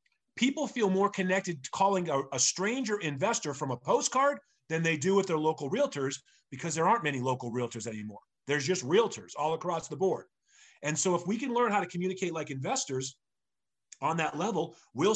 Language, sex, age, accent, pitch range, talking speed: English, male, 30-49, American, 140-190 Hz, 190 wpm